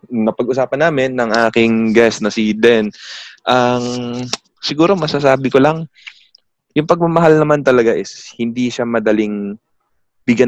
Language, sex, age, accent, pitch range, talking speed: Filipino, male, 20-39, native, 105-140 Hz, 125 wpm